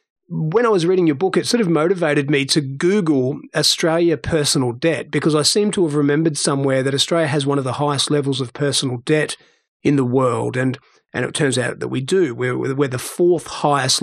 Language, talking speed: English, 215 wpm